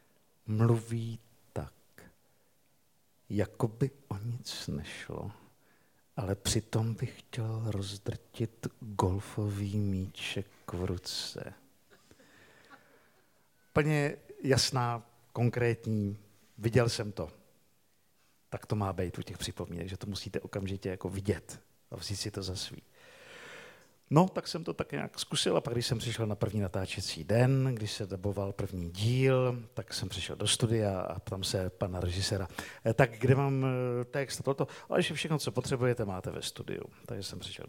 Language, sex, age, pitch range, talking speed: Czech, male, 50-69, 95-120 Hz, 140 wpm